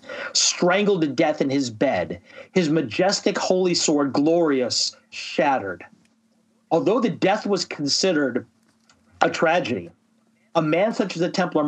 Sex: male